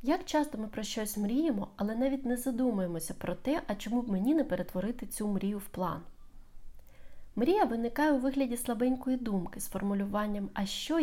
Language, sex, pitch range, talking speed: Ukrainian, female, 195-260 Hz, 175 wpm